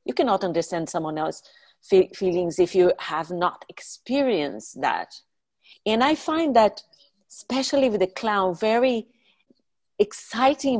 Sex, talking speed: female, 120 wpm